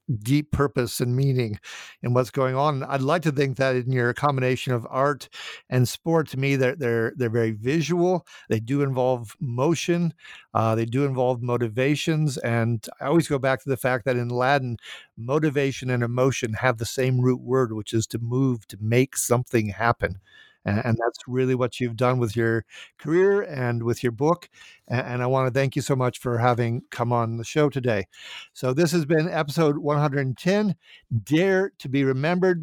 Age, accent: 50-69, American